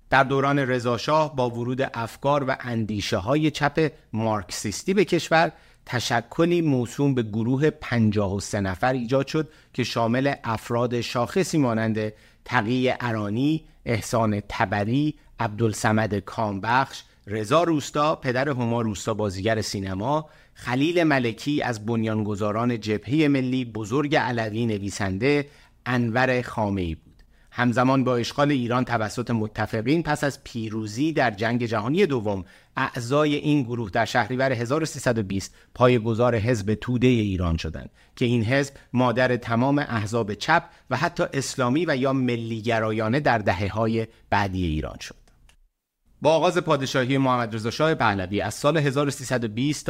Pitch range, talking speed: 110-140 Hz, 125 wpm